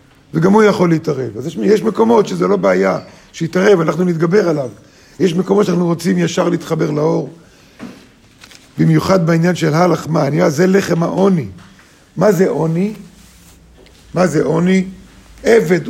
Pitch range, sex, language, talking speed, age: 150-195 Hz, male, Hebrew, 140 wpm, 50-69